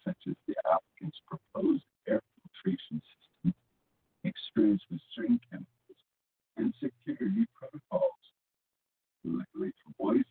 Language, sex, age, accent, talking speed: English, male, 60-79, American, 110 wpm